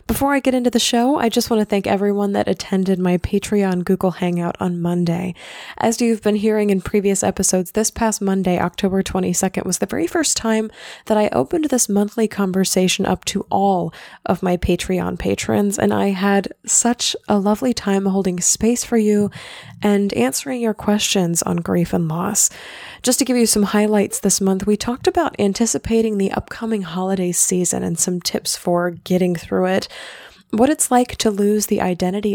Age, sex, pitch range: 20-39, female, 180-220 Hz